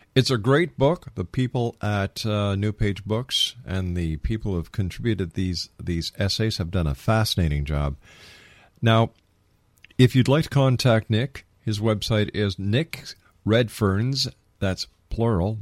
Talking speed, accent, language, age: 145 wpm, American, English, 50-69